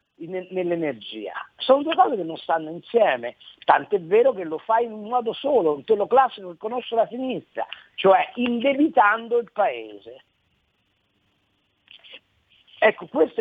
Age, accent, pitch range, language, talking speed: 50-69, native, 170-250 Hz, Italian, 140 wpm